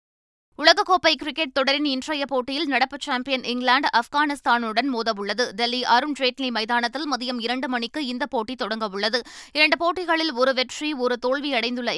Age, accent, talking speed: 20-39, native, 125 wpm